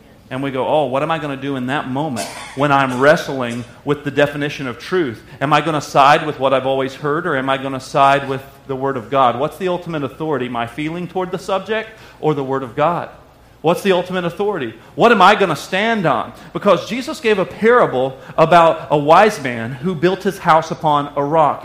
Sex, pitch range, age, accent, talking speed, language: male, 140-190 Hz, 40-59, American, 230 wpm, English